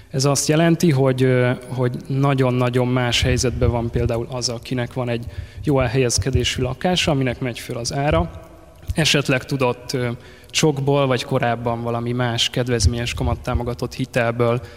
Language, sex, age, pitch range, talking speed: Hungarian, male, 20-39, 120-135 Hz, 130 wpm